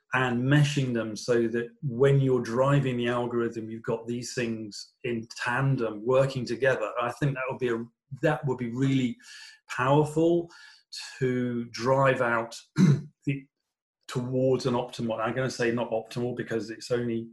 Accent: British